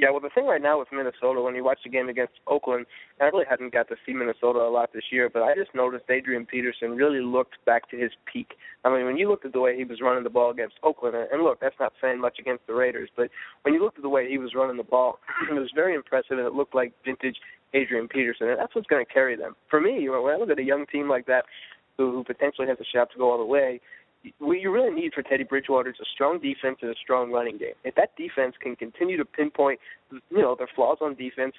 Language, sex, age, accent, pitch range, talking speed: English, male, 20-39, American, 125-145 Hz, 270 wpm